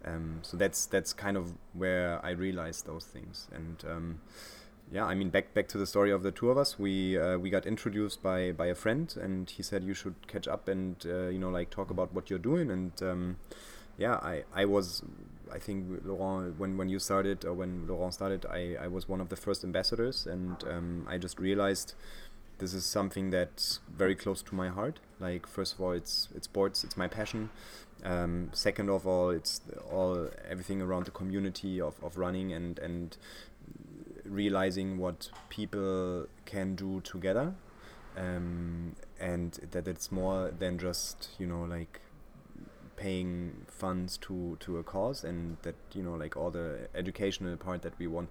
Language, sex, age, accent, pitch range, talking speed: English, male, 30-49, German, 90-95 Hz, 185 wpm